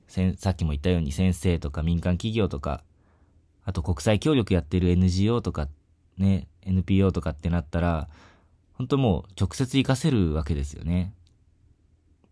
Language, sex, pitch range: Japanese, male, 85-105 Hz